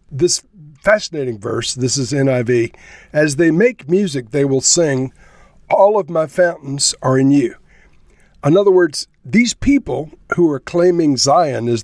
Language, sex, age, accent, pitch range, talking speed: English, male, 50-69, American, 125-165 Hz, 150 wpm